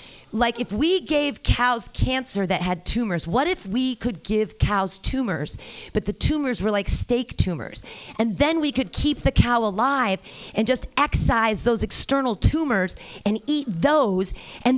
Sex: female